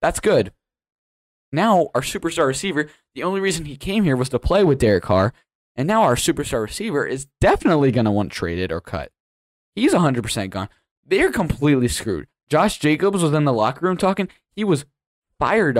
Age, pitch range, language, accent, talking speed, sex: 10-29, 100-160 Hz, English, American, 180 wpm, male